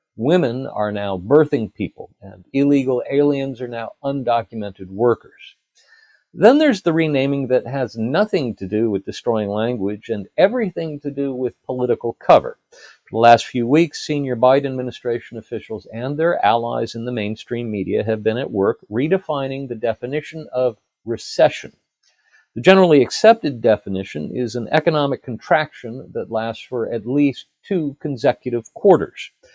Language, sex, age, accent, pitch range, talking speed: English, male, 50-69, American, 115-145 Hz, 145 wpm